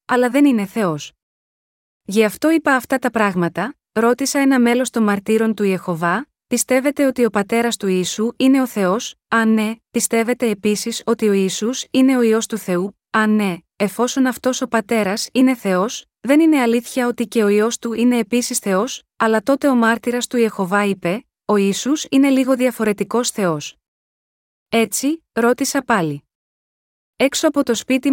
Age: 20-39